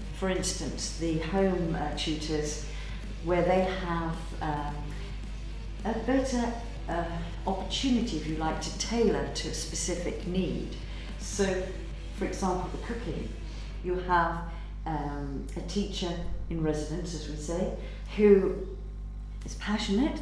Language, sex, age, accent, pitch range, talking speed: Greek, female, 50-69, British, 170-220 Hz, 120 wpm